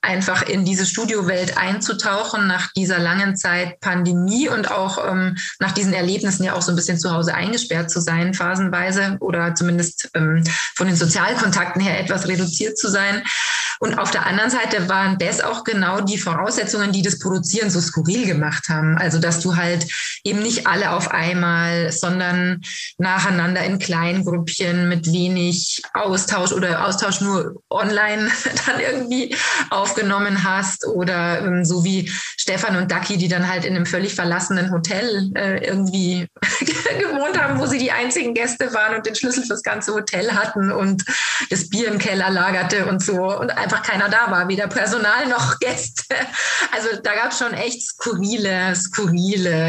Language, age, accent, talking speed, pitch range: German, 20-39, German, 170 wpm, 180-205 Hz